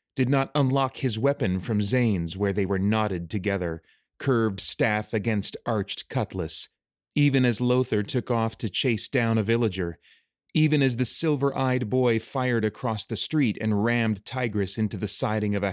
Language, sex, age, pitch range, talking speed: English, male, 30-49, 105-130 Hz, 170 wpm